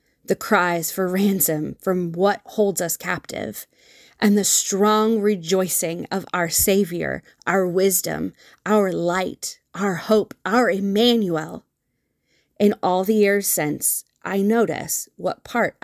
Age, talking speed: 20-39, 125 wpm